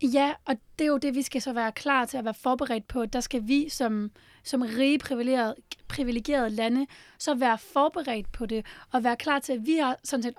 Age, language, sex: 30-49, Danish, female